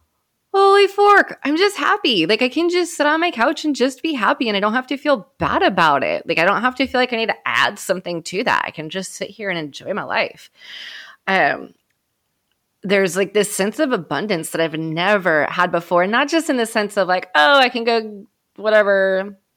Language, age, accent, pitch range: English, 20-39, American, 165-225 Hz